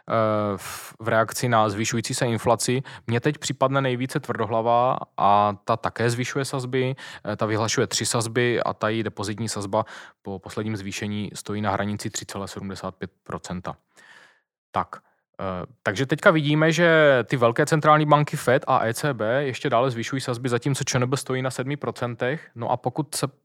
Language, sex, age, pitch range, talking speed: Czech, male, 20-39, 105-135 Hz, 145 wpm